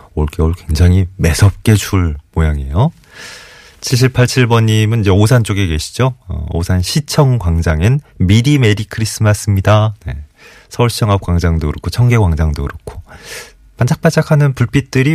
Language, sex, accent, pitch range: Korean, male, native, 80-115 Hz